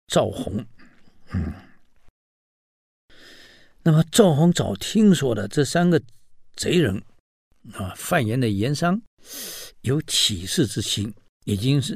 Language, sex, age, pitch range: Chinese, male, 60-79, 105-170 Hz